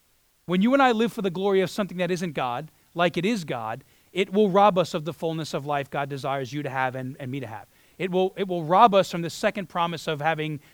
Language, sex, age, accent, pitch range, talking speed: English, male, 30-49, American, 150-185 Hz, 265 wpm